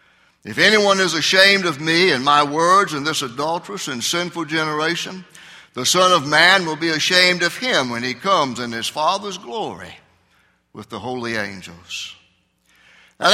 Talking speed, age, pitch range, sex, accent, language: 160 wpm, 60-79, 130-175 Hz, male, American, English